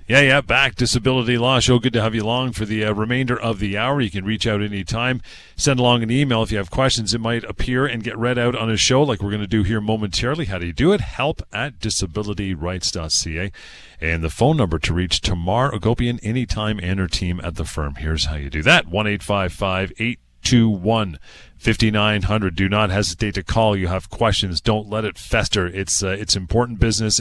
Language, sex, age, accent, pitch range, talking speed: English, male, 40-59, American, 95-120 Hz, 220 wpm